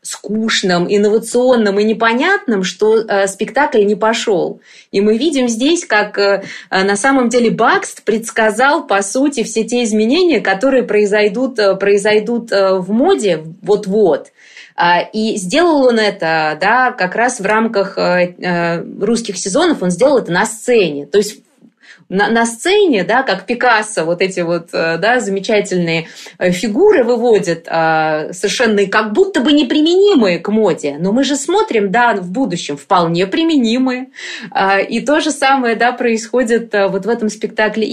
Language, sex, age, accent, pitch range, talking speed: Russian, female, 20-39, native, 195-250 Hz, 140 wpm